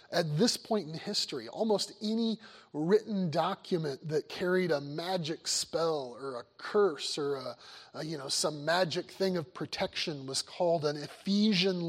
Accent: American